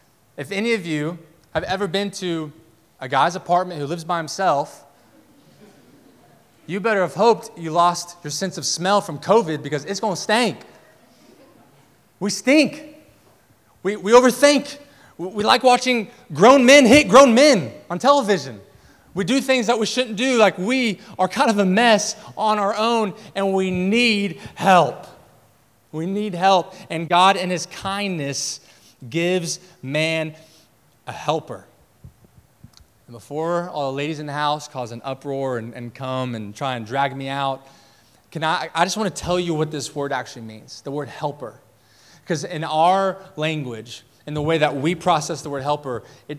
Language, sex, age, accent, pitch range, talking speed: English, male, 20-39, American, 140-200 Hz, 170 wpm